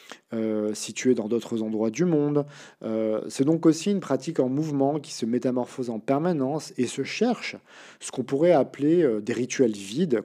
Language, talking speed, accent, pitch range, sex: French, 180 wpm, French, 115-145 Hz, male